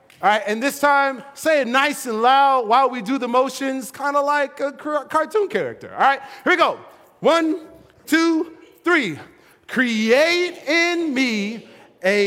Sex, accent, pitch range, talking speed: male, American, 185-280 Hz, 160 wpm